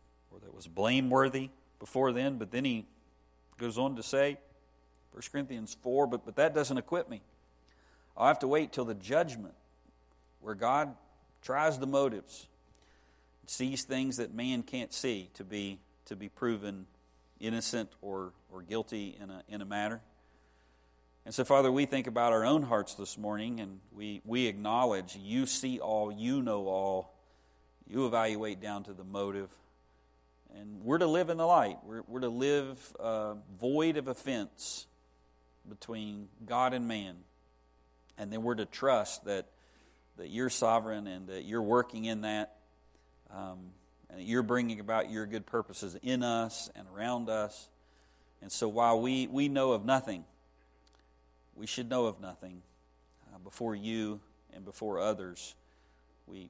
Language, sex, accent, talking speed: English, male, American, 160 wpm